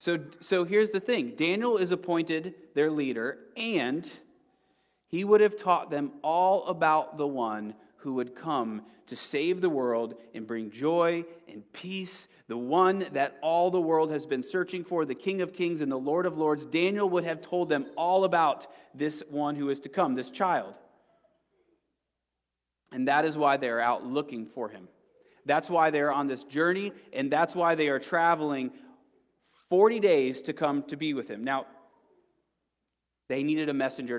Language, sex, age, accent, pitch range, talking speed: English, male, 30-49, American, 130-180 Hz, 175 wpm